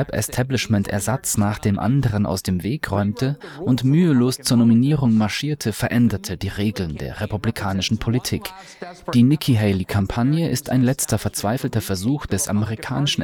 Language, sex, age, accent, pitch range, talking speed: German, male, 30-49, German, 105-130 Hz, 125 wpm